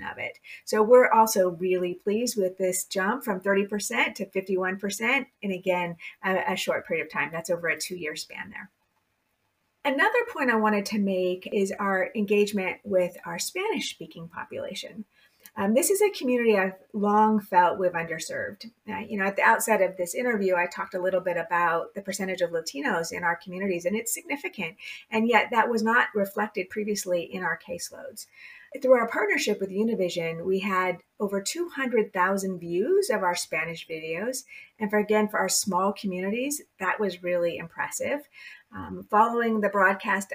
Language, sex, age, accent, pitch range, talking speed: English, female, 30-49, American, 180-225 Hz, 170 wpm